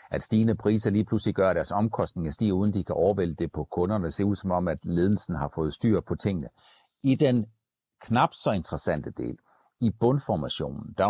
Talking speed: 200 wpm